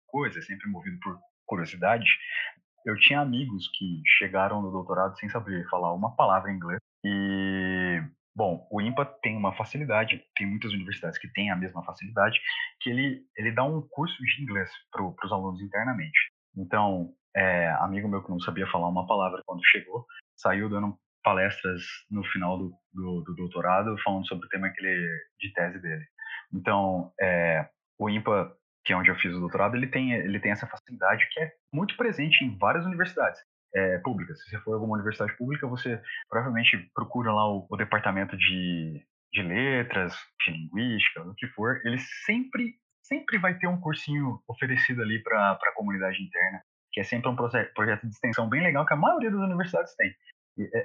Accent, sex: Brazilian, male